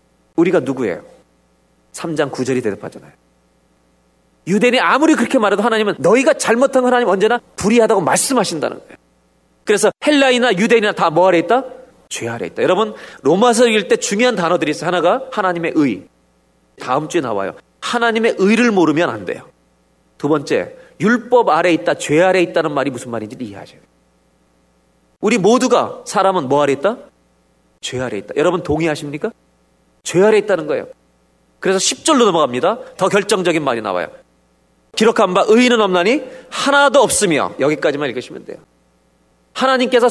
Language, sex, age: Korean, male, 40-59